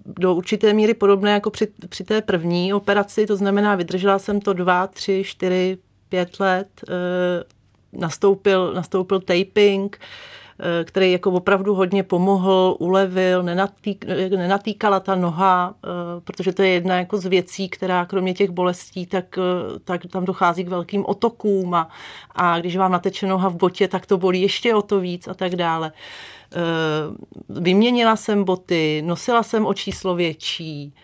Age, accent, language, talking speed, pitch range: 40-59, native, Czech, 145 wpm, 180-200 Hz